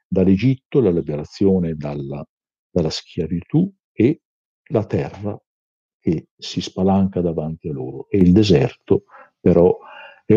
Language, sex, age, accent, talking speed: Italian, male, 50-69, native, 115 wpm